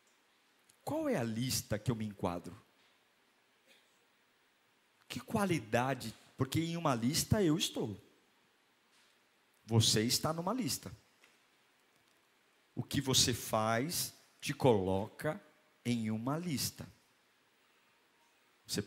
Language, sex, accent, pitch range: Portuguese, male, Brazilian, 115-150 Hz